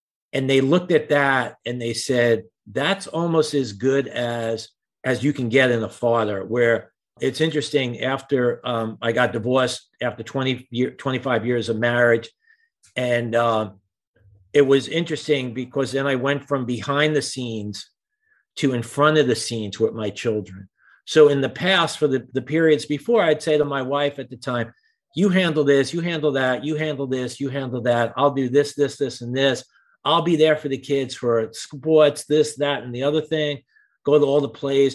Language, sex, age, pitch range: English, male, 50-69, 125-150 Hz